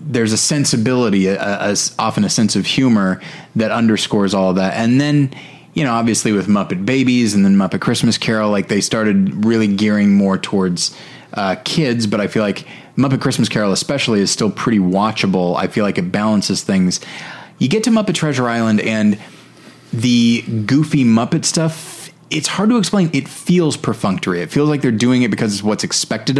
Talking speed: 185 wpm